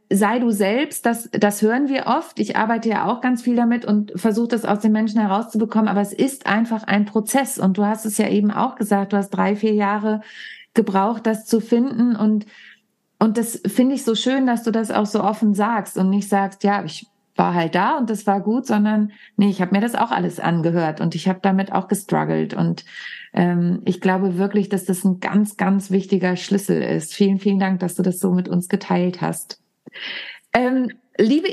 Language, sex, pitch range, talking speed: German, female, 195-235 Hz, 210 wpm